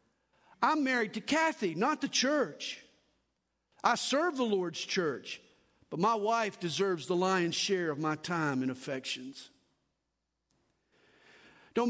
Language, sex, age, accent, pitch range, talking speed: English, male, 50-69, American, 165-230 Hz, 125 wpm